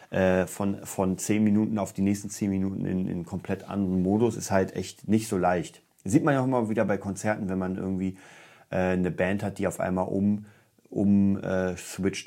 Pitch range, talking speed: 95-115 Hz, 195 wpm